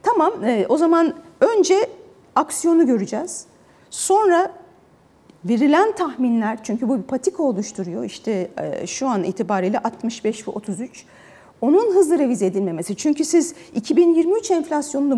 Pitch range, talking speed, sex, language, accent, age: 235-345 Hz, 115 wpm, female, Turkish, native, 40-59